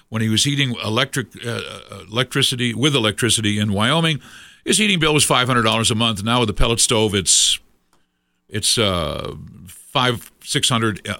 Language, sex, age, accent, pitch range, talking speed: English, male, 60-79, American, 105-140 Hz, 165 wpm